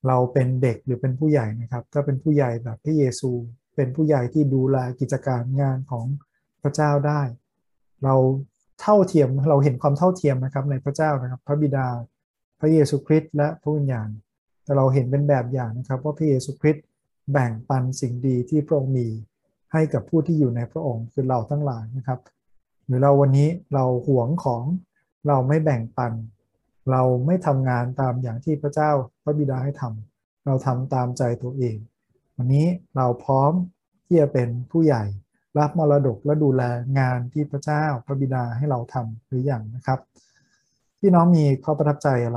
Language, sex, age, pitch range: Thai, male, 20-39, 125-150 Hz